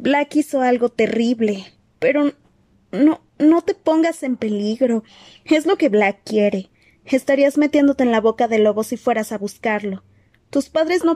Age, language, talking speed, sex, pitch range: 20-39, Spanish, 160 wpm, female, 185-245 Hz